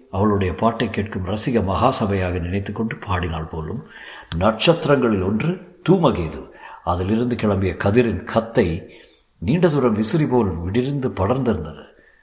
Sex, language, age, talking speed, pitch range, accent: male, Tamil, 50-69, 110 wpm, 90-125 Hz, native